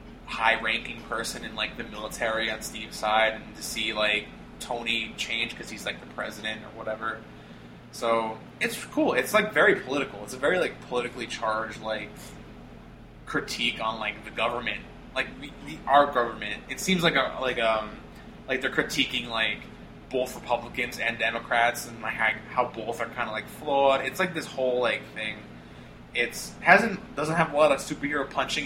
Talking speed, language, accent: 170 wpm, English, American